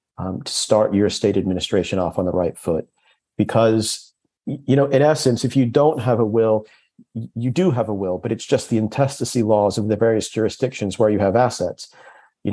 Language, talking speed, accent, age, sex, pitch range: English, 200 wpm, American, 40-59, male, 105-125 Hz